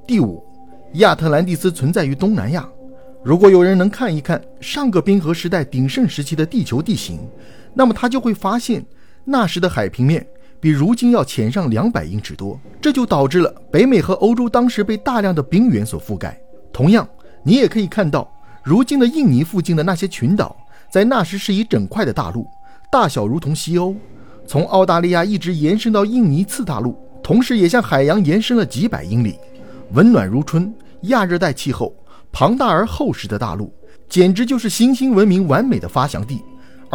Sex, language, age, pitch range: male, Chinese, 50-69, 140-235 Hz